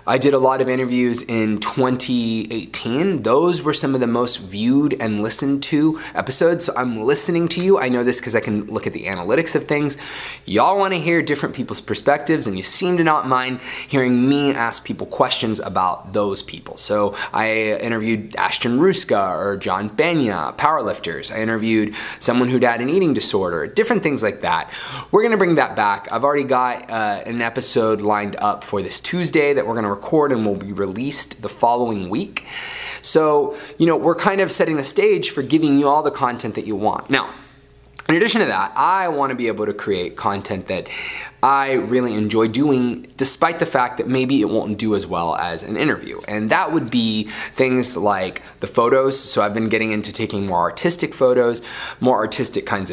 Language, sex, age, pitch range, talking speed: English, male, 20-39, 110-145 Hz, 200 wpm